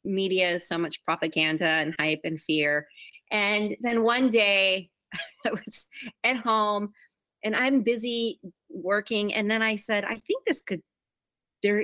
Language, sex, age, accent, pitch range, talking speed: English, female, 30-49, American, 170-215 Hz, 150 wpm